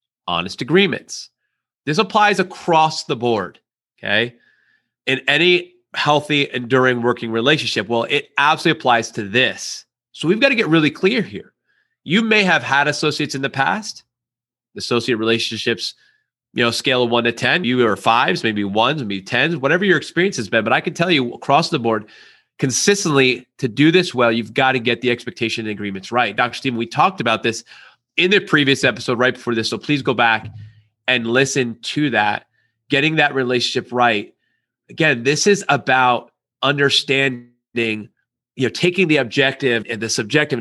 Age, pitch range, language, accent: 30-49, 115-150 Hz, English, American